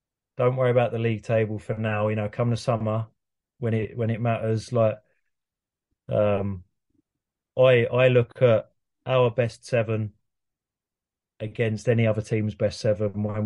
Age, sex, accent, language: 20-39, male, British, English